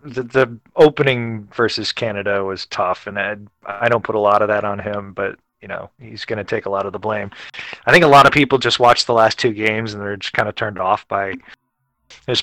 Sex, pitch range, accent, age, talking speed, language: male, 105-130 Hz, American, 20-39, 245 wpm, English